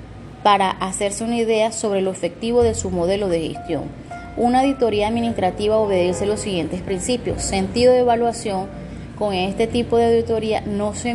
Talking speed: 155 wpm